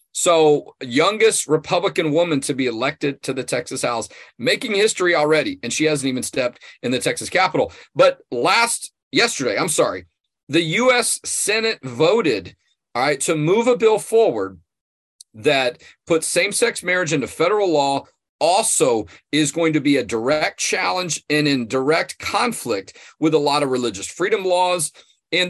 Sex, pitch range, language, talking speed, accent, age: male, 140-195 Hz, English, 155 wpm, American, 40-59